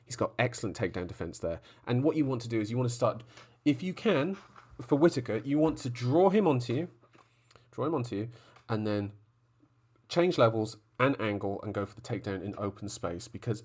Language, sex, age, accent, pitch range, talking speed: English, male, 40-59, British, 110-160 Hz, 210 wpm